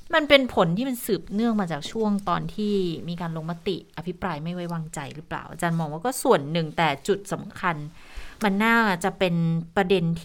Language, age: Thai, 20-39